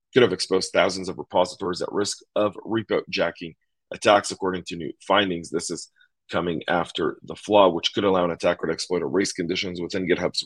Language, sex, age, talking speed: English, male, 40-59, 195 wpm